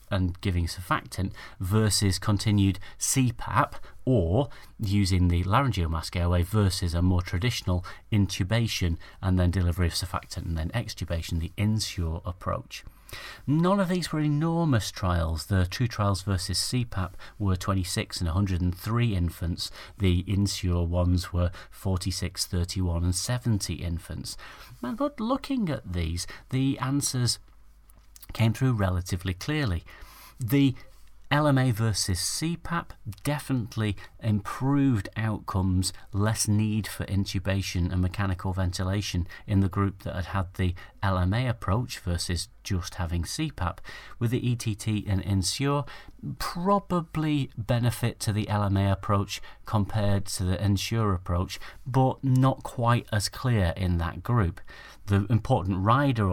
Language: English